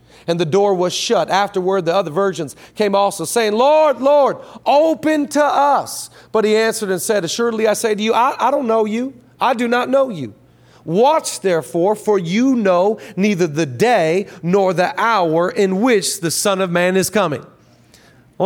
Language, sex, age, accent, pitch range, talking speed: English, male, 40-59, American, 150-210 Hz, 185 wpm